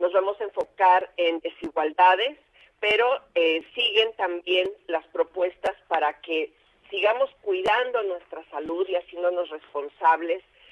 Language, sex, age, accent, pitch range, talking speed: Spanish, female, 50-69, Mexican, 165-205 Hz, 120 wpm